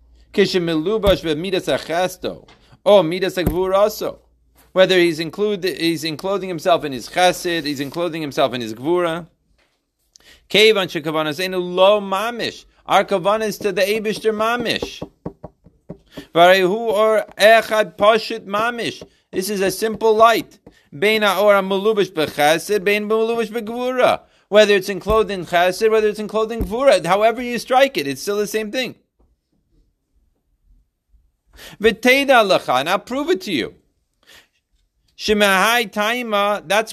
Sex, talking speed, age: male, 120 wpm, 40-59